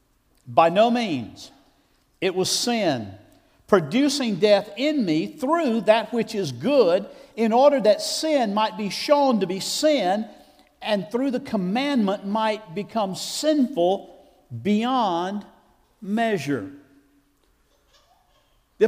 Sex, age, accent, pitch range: male, 50-69, American, 190-255 Hz